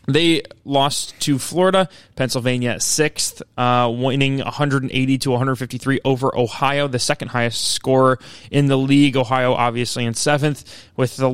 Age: 20-39